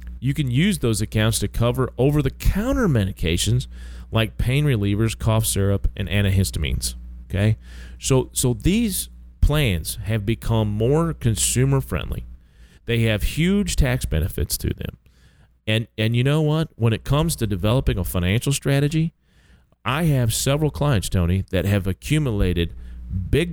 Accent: American